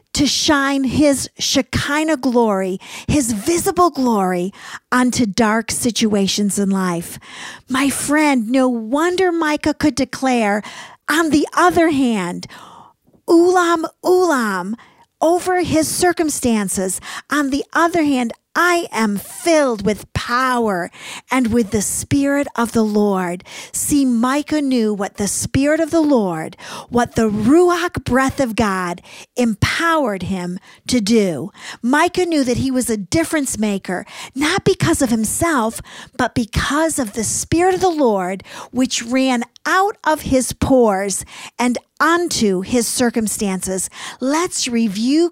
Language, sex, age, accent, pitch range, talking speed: English, female, 50-69, American, 220-310 Hz, 125 wpm